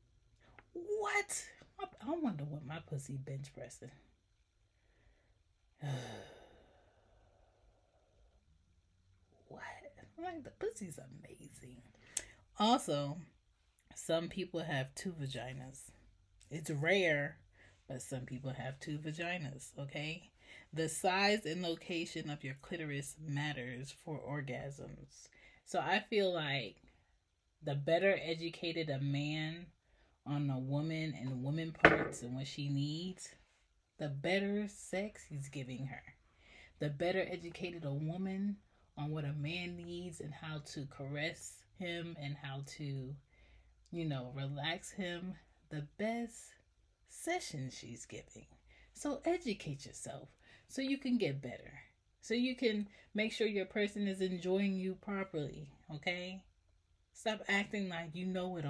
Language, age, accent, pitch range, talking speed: English, 30-49, American, 125-180 Hz, 120 wpm